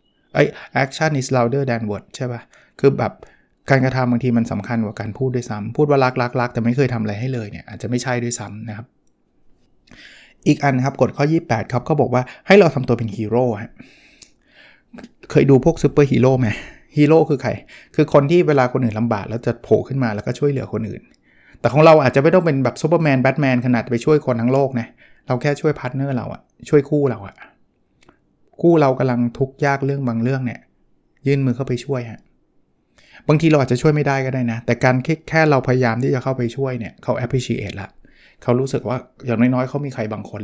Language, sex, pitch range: Thai, male, 120-140 Hz